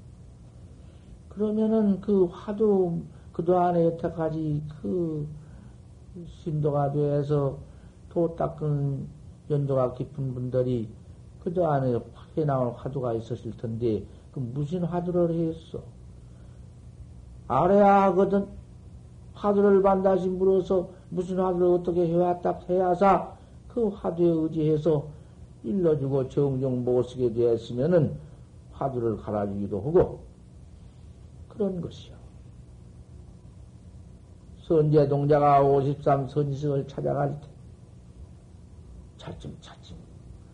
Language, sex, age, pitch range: Korean, male, 50-69, 115-170 Hz